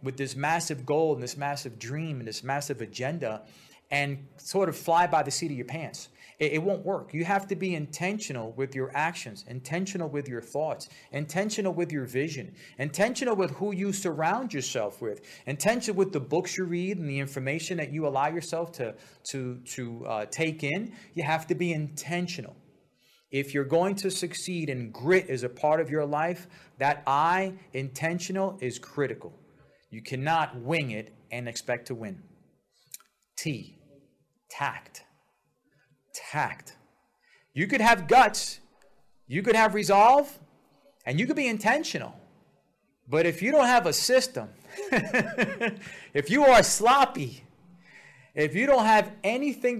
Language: English